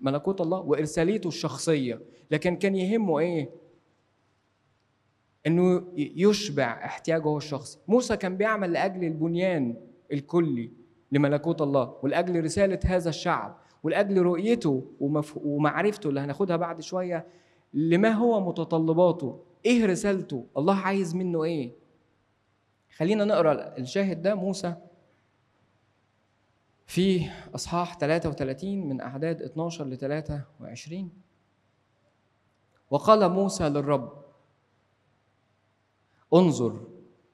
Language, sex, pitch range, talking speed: Arabic, male, 130-175 Hz, 95 wpm